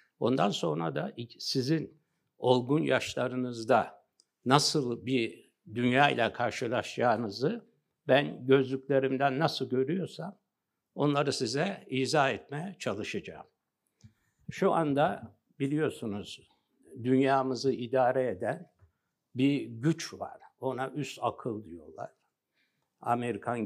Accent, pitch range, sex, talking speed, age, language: native, 120-150 Hz, male, 85 wpm, 60-79, Turkish